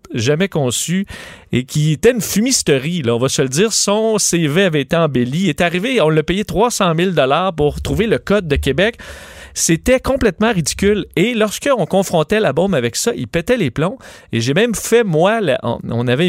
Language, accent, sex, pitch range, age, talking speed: French, Canadian, male, 145-195 Hz, 40-59, 200 wpm